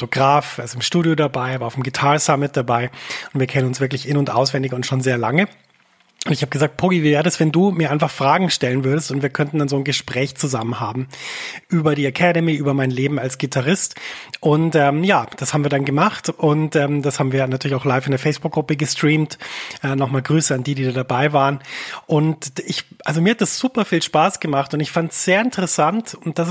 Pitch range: 140-165 Hz